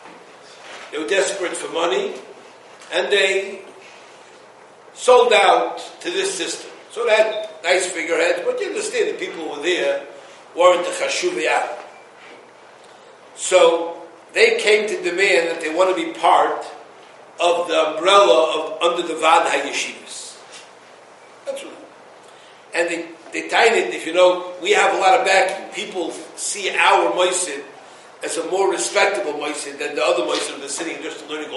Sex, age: male, 60-79